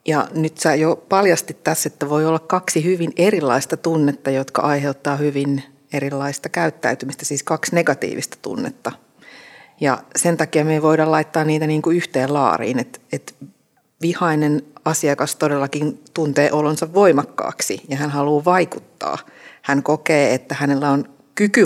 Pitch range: 140-170 Hz